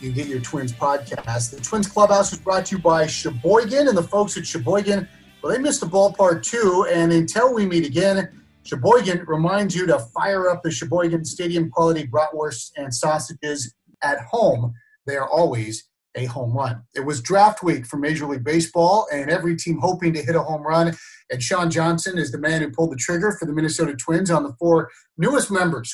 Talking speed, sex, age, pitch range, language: 200 wpm, male, 30-49, 150-180 Hz, English